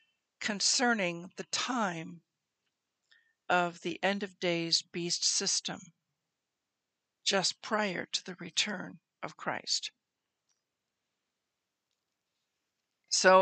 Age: 60-79